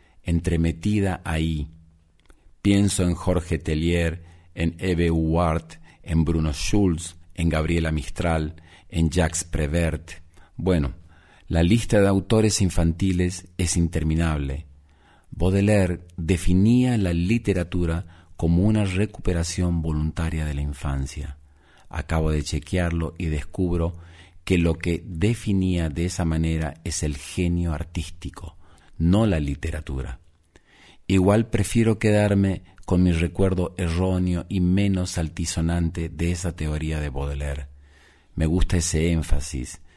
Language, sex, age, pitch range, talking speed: Spanish, male, 50-69, 80-90 Hz, 115 wpm